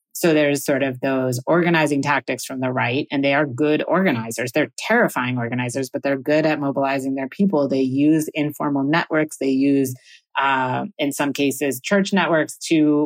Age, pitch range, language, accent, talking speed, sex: 30-49, 135-155 Hz, English, American, 175 wpm, female